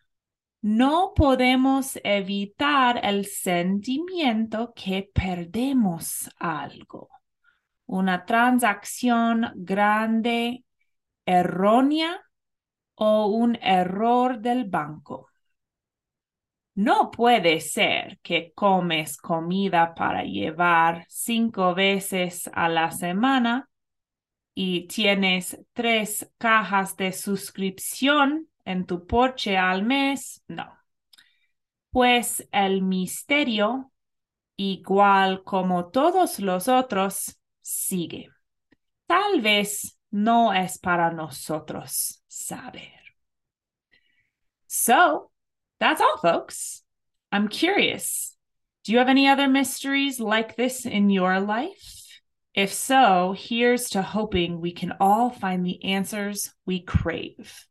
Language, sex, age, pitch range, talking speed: Spanish, female, 20-39, 185-250 Hz, 90 wpm